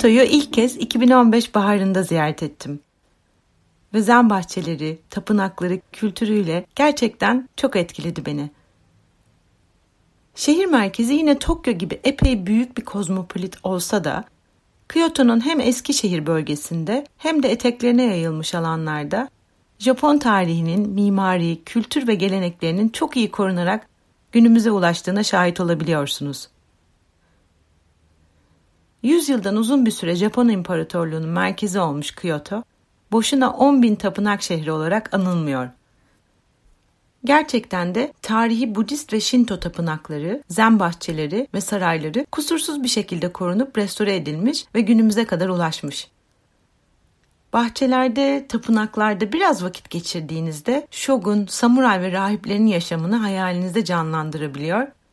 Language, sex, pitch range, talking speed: Turkish, female, 165-235 Hz, 110 wpm